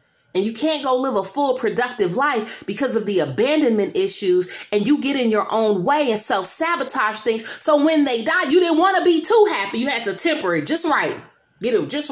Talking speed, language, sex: 230 wpm, English, female